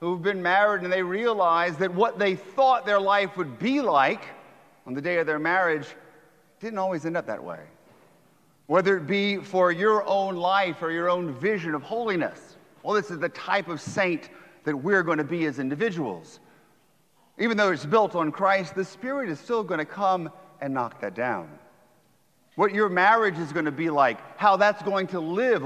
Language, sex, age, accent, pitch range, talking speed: English, male, 40-59, American, 170-210 Hz, 195 wpm